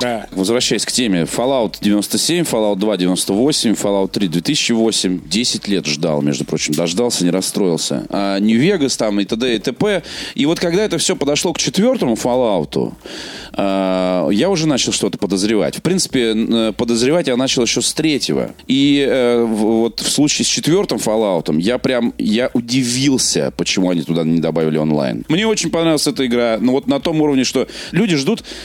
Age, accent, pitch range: 30-49, native, 95-135 Hz